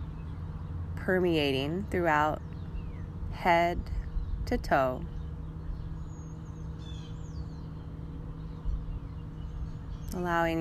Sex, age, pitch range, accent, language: female, 20-39, 80-100 Hz, American, English